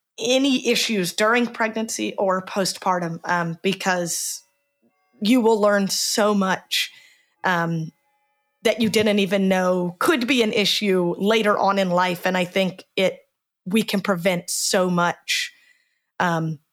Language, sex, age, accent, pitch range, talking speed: English, female, 30-49, American, 180-225 Hz, 135 wpm